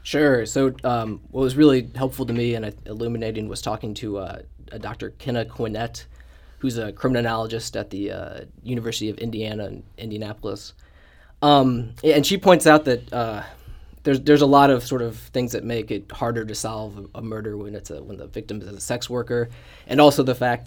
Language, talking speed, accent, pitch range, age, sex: English, 195 wpm, American, 105-130 Hz, 20-39, male